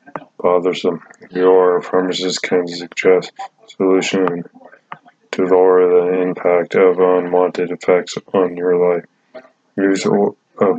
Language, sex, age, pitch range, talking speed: English, male, 20-39, 90-95 Hz, 100 wpm